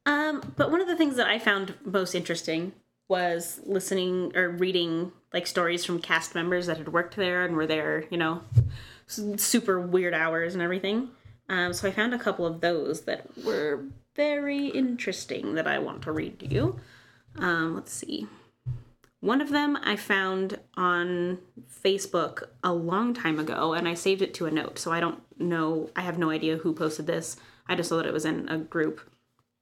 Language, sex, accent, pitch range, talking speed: English, female, American, 165-205 Hz, 190 wpm